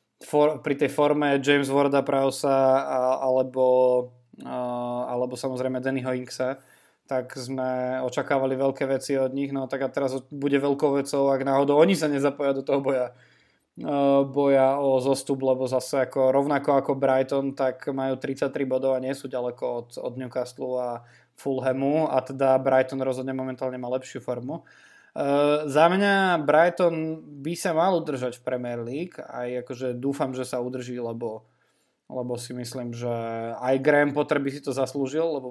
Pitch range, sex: 130-140 Hz, male